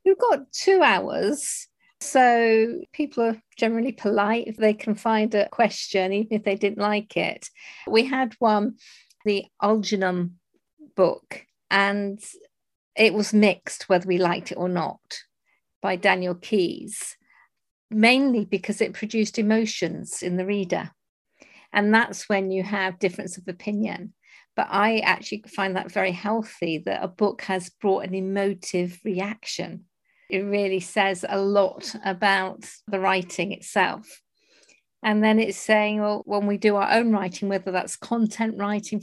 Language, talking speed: English, 145 wpm